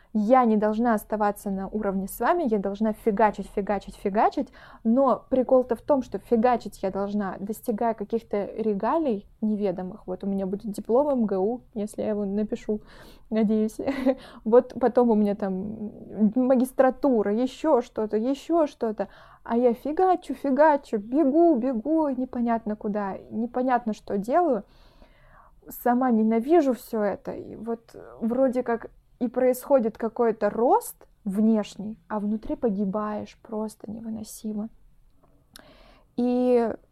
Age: 20-39